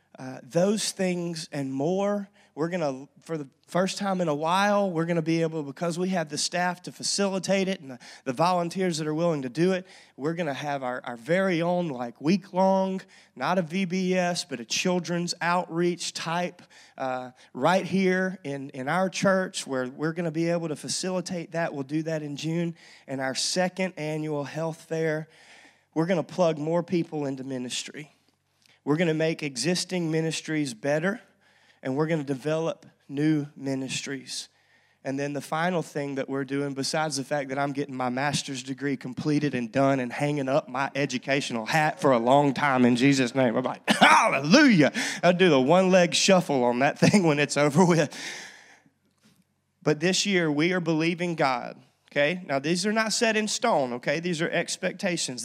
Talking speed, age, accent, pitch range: 185 wpm, 30-49, American, 140-180 Hz